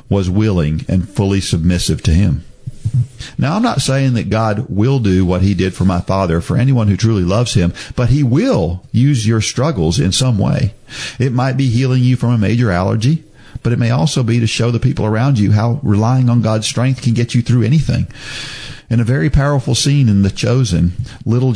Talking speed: 210 wpm